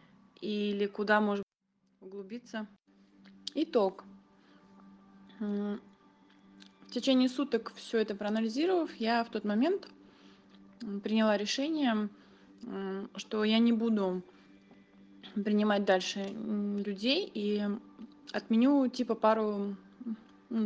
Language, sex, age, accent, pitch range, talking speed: Russian, female, 20-39, native, 165-230 Hz, 85 wpm